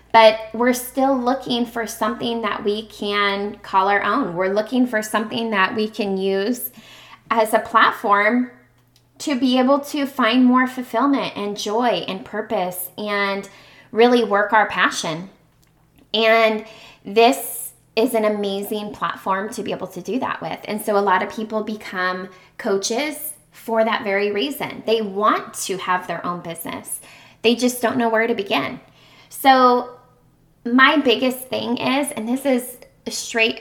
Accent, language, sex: American, English, female